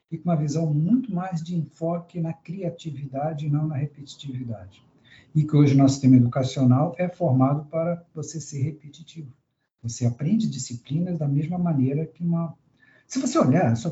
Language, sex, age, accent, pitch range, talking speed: Portuguese, male, 60-79, Brazilian, 125-165 Hz, 165 wpm